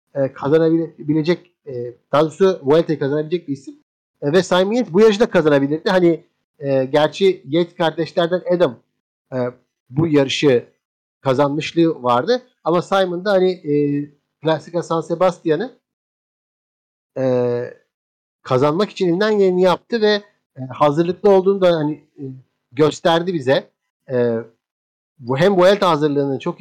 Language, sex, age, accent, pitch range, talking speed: Turkish, male, 50-69, native, 145-190 Hz, 120 wpm